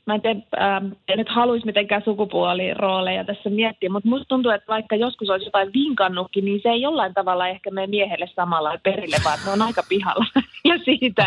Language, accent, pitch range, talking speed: Finnish, native, 185-230 Hz, 195 wpm